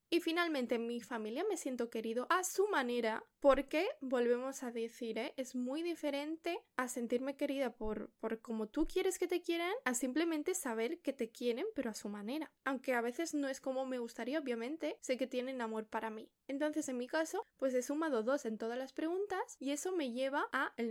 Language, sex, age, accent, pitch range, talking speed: Spanish, female, 10-29, Spanish, 225-295 Hz, 205 wpm